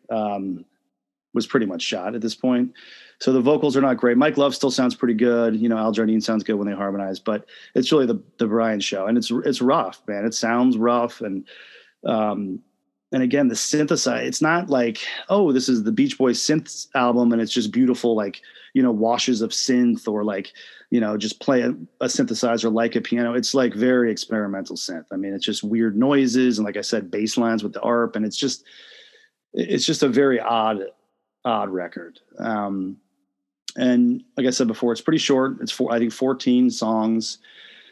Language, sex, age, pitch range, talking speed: English, male, 30-49, 110-130 Hz, 200 wpm